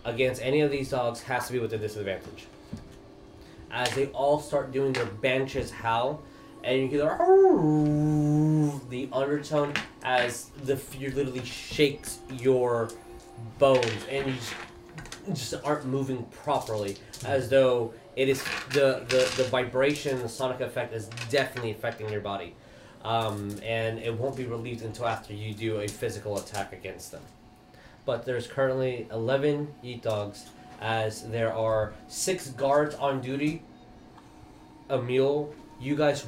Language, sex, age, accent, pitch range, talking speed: English, male, 20-39, American, 115-135 Hz, 145 wpm